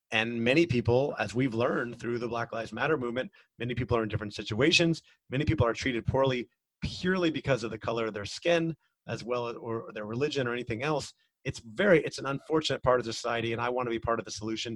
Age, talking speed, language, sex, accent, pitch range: 30-49, 230 wpm, English, male, American, 115-140 Hz